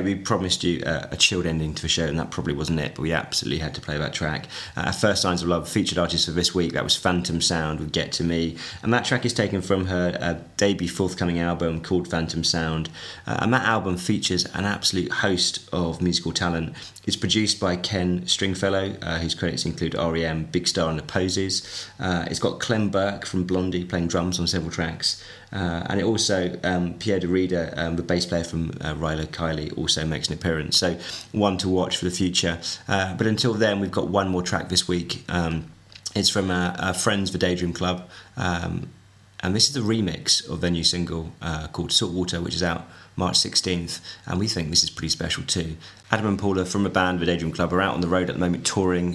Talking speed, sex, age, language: 220 wpm, male, 20-39, English